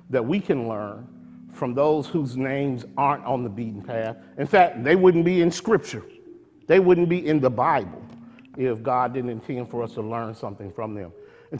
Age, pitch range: 50-69, 115-150 Hz